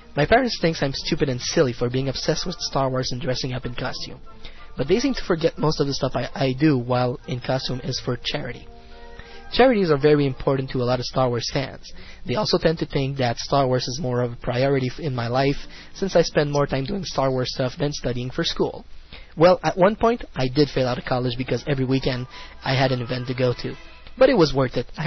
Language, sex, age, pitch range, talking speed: English, male, 20-39, 125-155 Hz, 245 wpm